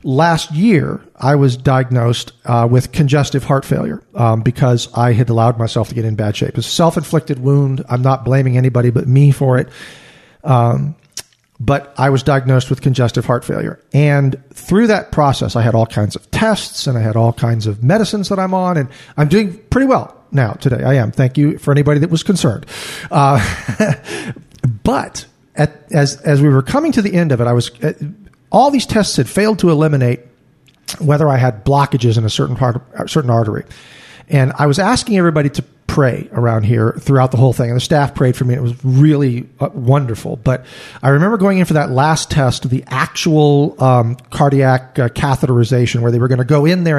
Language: English